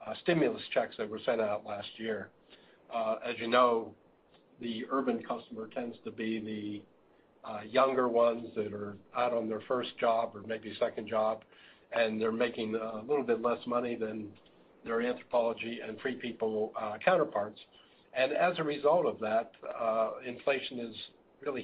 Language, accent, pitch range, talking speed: English, American, 110-130 Hz, 165 wpm